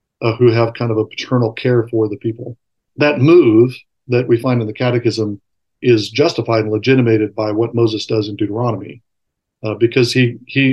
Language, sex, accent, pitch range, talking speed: English, male, American, 110-125 Hz, 185 wpm